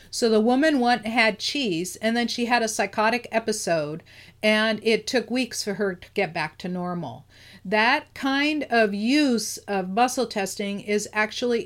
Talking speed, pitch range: 165 wpm, 200-240 Hz